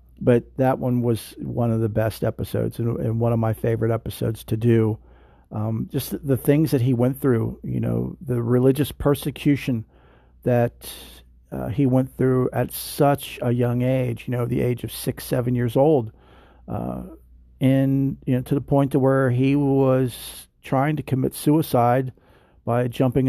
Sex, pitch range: male, 115-135 Hz